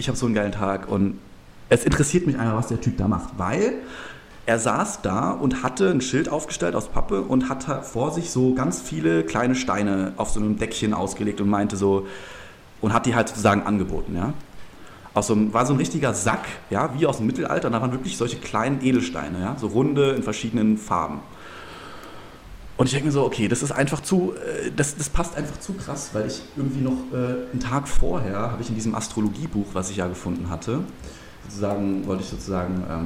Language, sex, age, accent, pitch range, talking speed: German, male, 30-49, German, 100-130 Hz, 200 wpm